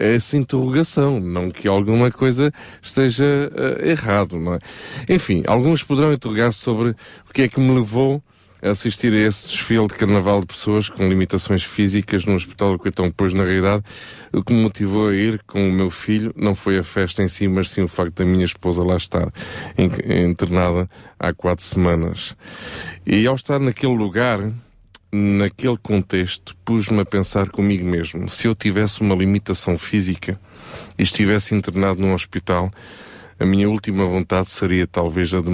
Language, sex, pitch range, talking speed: Portuguese, male, 90-110 Hz, 170 wpm